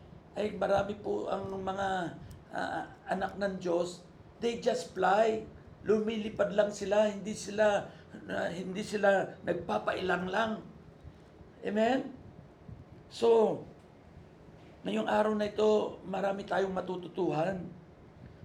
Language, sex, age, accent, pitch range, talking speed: Filipino, male, 50-69, native, 190-235 Hz, 105 wpm